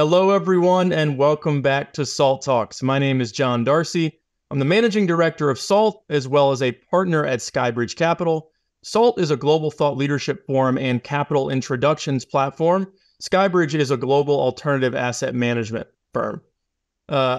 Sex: male